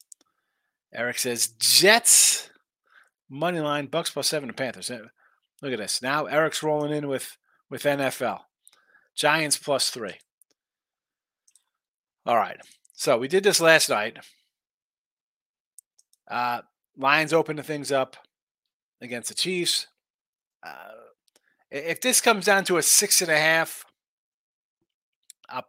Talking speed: 120 wpm